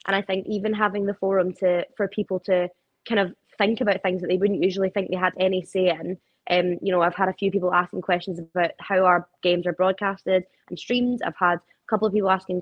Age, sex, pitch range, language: 20-39, female, 175-200 Hz, English